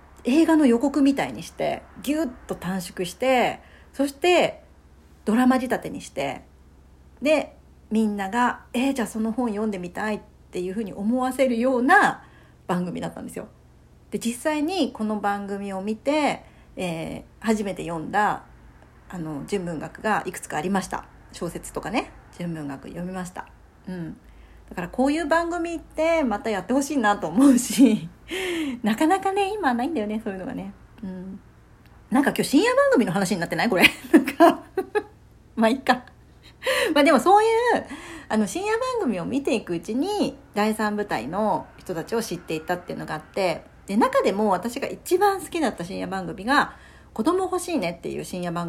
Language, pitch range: Japanese, 185-285 Hz